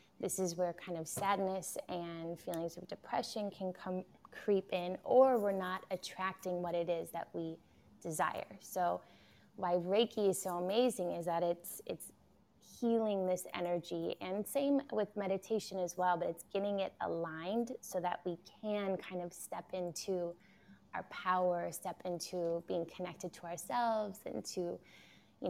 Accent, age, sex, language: American, 20-39, female, English